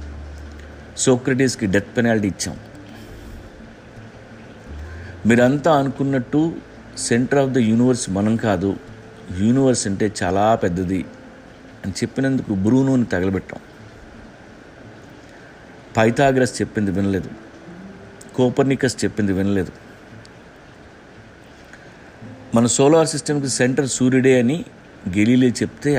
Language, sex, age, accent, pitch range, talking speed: Telugu, male, 50-69, native, 100-125 Hz, 80 wpm